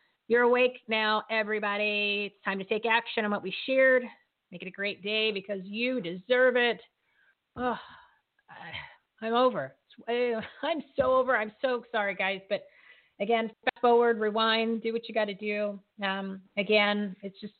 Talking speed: 155 wpm